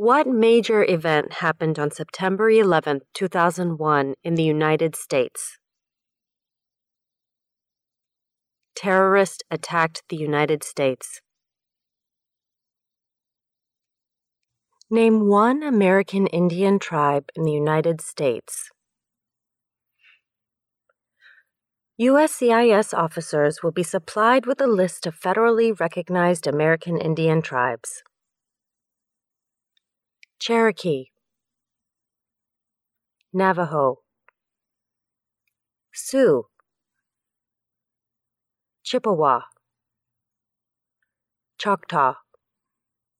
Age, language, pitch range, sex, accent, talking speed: 30-49, English, 150-225 Hz, female, American, 65 wpm